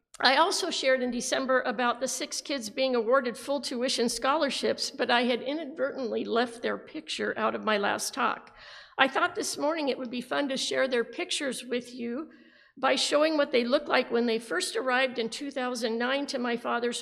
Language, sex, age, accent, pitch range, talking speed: English, female, 50-69, American, 225-295 Hz, 195 wpm